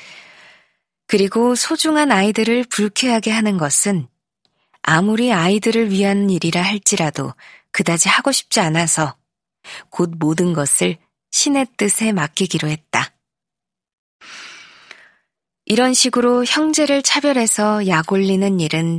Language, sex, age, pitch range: Korean, female, 20-39, 170-240 Hz